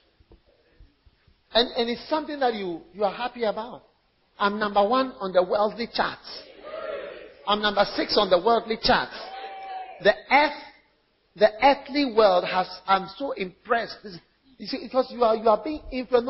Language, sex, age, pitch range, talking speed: English, male, 50-69, 200-275 Hz, 155 wpm